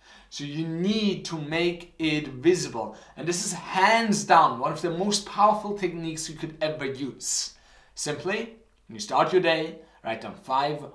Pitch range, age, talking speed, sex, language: 150-195 Hz, 30-49, 170 wpm, male, English